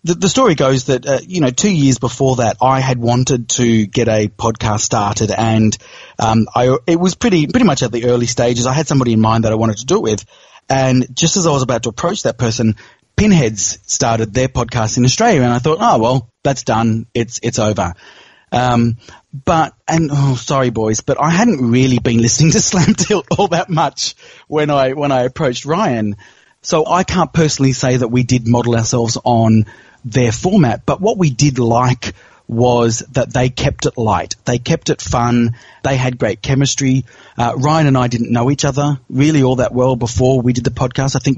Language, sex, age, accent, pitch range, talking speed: English, male, 30-49, Australian, 120-145 Hz, 210 wpm